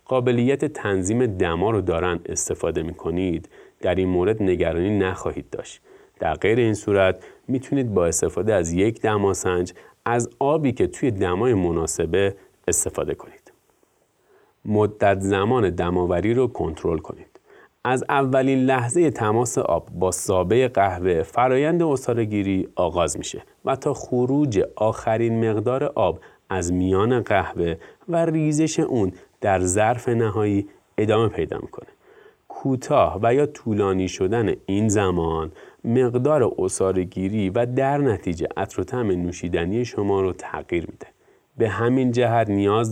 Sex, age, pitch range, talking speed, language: male, 30-49, 95-130 Hz, 125 wpm, Persian